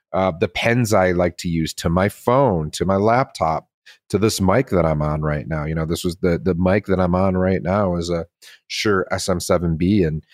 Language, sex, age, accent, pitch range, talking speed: English, male, 40-59, American, 80-95 Hz, 220 wpm